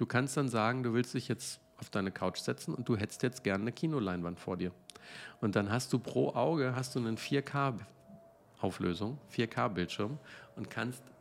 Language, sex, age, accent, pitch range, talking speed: German, male, 50-69, German, 105-130 Hz, 170 wpm